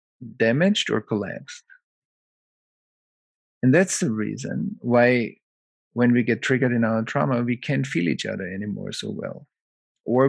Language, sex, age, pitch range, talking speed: English, male, 50-69, 110-135 Hz, 140 wpm